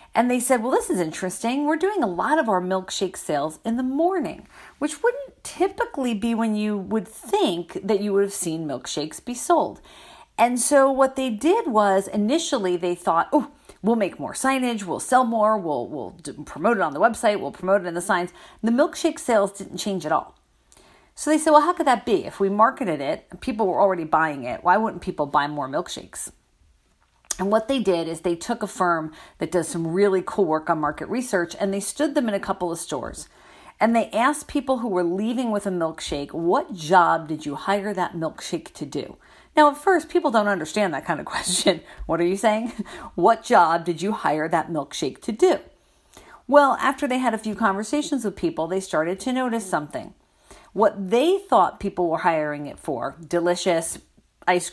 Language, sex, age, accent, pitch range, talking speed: English, female, 40-59, American, 175-255 Hz, 205 wpm